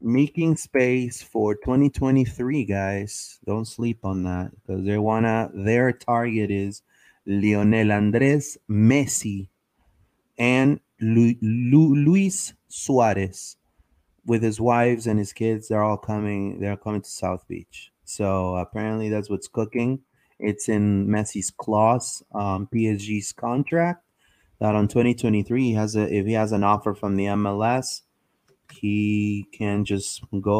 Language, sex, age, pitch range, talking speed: English, male, 30-49, 105-125 Hz, 125 wpm